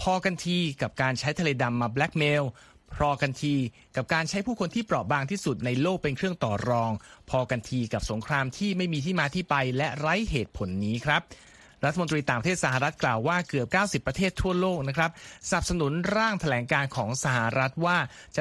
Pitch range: 125-170 Hz